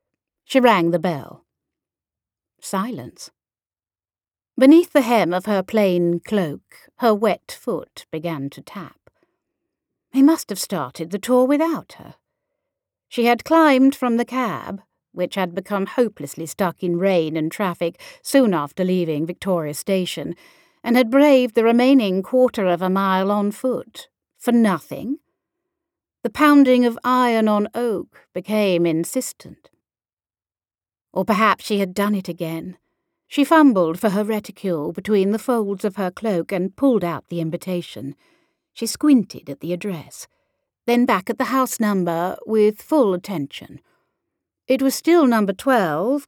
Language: English